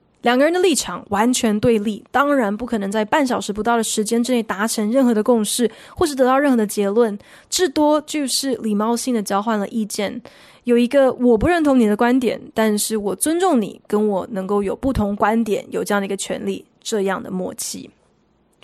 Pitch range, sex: 210-265 Hz, female